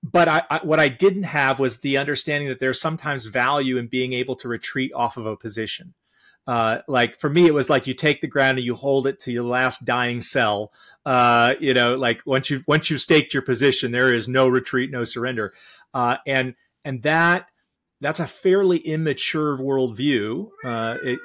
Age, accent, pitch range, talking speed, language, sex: 30-49, American, 120-150 Hz, 200 wpm, English, male